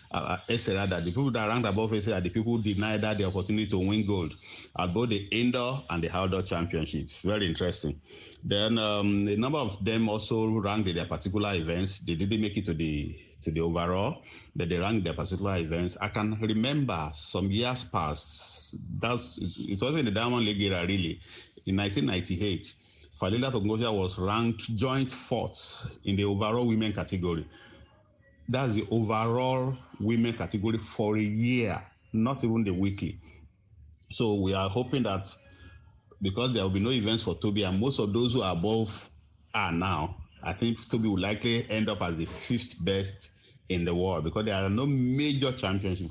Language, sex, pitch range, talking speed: English, male, 90-115 Hz, 180 wpm